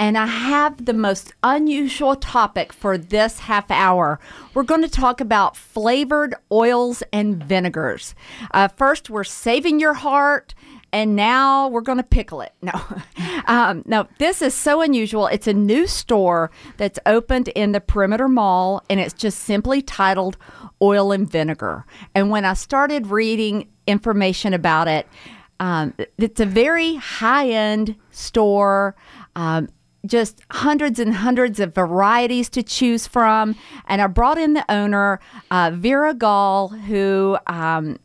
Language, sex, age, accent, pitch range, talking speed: English, female, 50-69, American, 195-270 Hz, 145 wpm